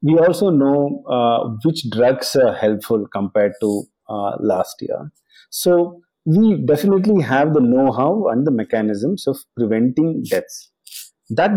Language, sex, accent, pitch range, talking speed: English, male, Indian, 120-205 Hz, 135 wpm